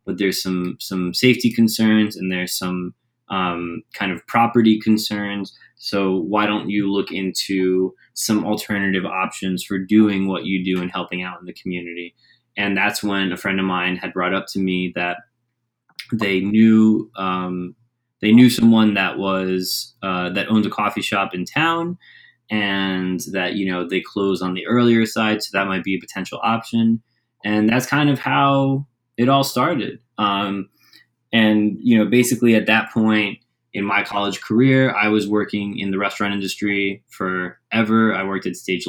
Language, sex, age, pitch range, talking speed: English, male, 20-39, 95-115 Hz, 175 wpm